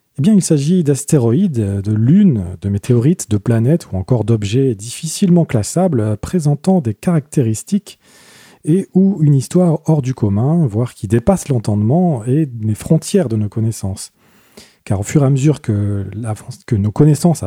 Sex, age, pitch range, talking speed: male, 40-59, 110-165 Hz, 155 wpm